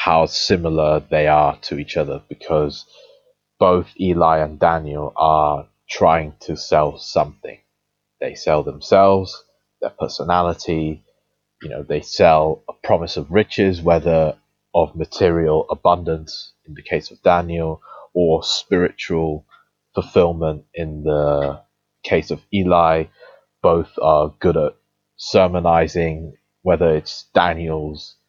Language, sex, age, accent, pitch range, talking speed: English, male, 20-39, British, 75-85 Hz, 115 wpm